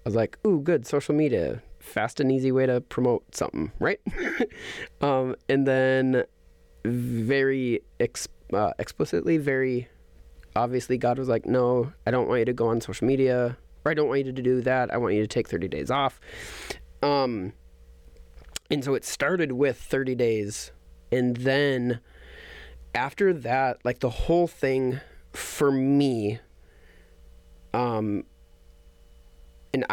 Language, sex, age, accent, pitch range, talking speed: English, male, 20-39, American, 115-135 Hz, 145 wpm